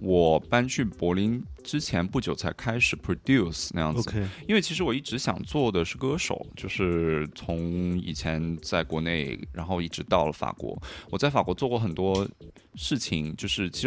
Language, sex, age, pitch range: Chinese, male, 20-39, 80-100 Hz